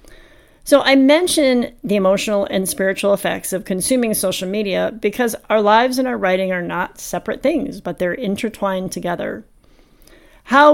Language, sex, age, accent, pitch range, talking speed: English, female, 40-59, American, 190-270 Hz, 150 wpm